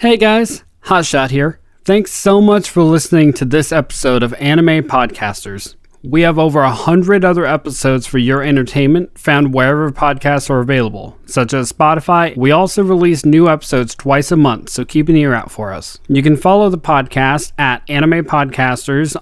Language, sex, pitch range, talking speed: English, male, 135-165 Hz, 175 wpm